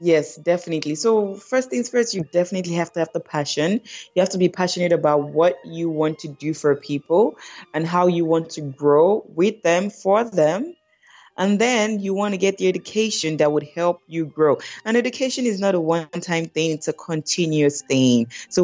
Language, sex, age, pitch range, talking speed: English, female, 20-39, 160-210 Hz, 195 wpm